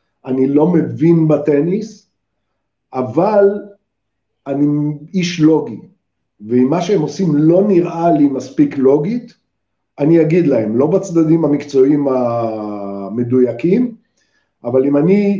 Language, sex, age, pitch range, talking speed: Hebrew, male, 50-69, 130-170 Hz, 105 wpm